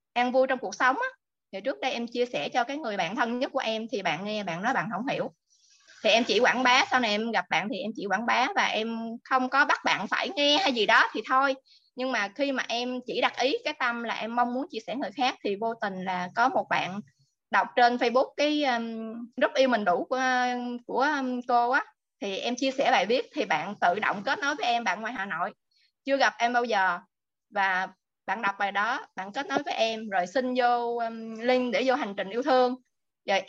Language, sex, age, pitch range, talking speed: Vietnamese, female, 20-39, 215-270 Hz, 245 wpm